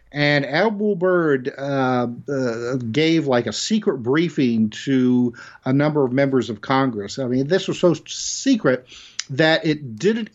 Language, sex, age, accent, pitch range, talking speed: English, male, 50-69, American, 120-165 Hz, 150 wpm